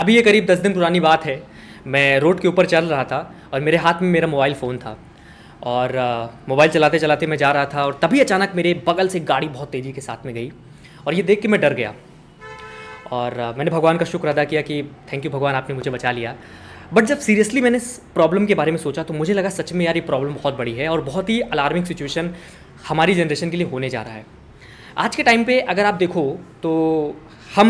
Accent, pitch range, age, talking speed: native, 140-185 Hz, 20-39, 235 wpm